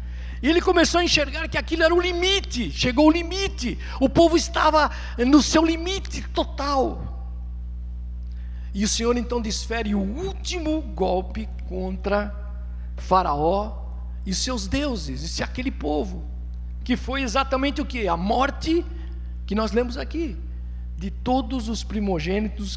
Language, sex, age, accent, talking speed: Portuguese, male, 50-69, Brazilian, 140 wpm